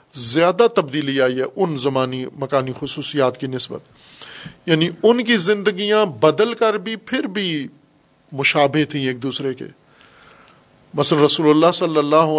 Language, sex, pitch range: Urdu, male, 140-180 Hz